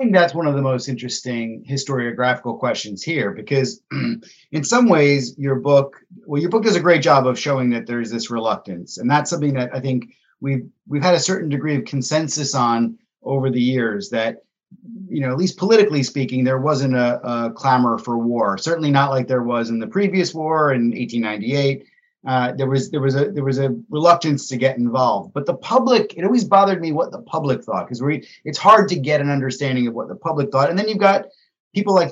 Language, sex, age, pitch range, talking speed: English, male, 30-49, 125-175 Hz, 220 wpm